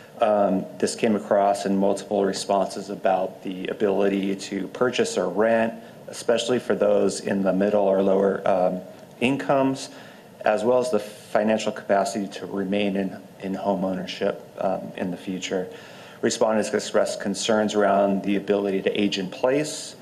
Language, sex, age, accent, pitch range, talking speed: English, male, 40-59, American, 100-115 Hz, 150 wpm